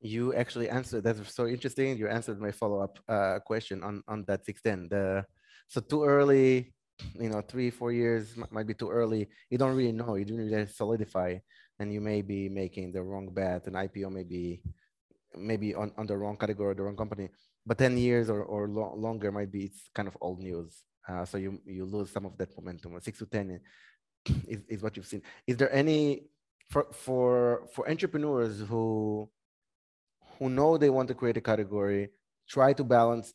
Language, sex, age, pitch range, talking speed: English, male, 20-39, 100-120 Hz, 195 wpm